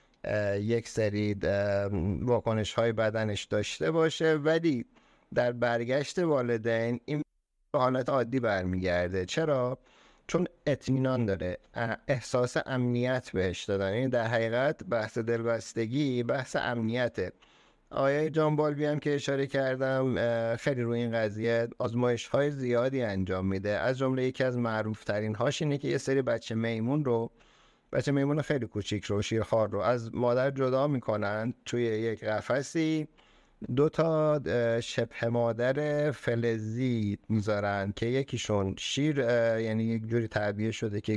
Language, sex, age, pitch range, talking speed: Persian, male, 50-69, 110-135 Hz, 125 wpm